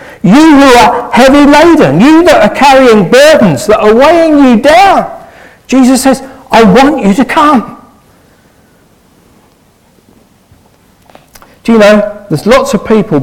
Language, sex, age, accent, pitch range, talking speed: English, male, 50-69, British, 170-260 Hz, 130 wpm